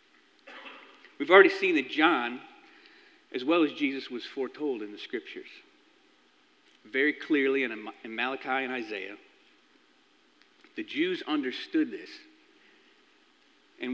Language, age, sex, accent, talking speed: English, 40-59, male, American, 110 wpm